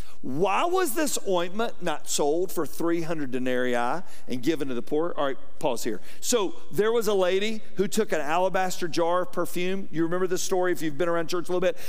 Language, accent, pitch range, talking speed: English, American, 160-220 Hz, 210 wpm